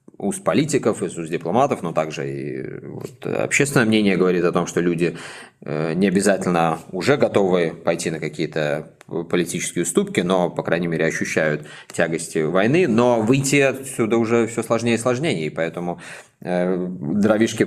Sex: male